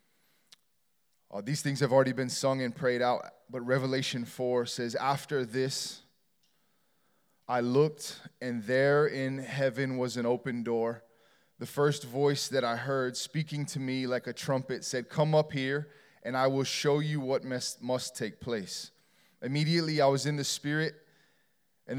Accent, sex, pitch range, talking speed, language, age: American, male, 135-165 Hz, 160 wpm, English, 20-39